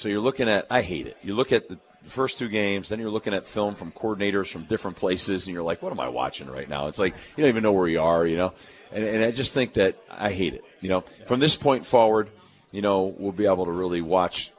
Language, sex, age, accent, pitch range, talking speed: English, male, 40-59, American, 90-105 Hz, 280 wpm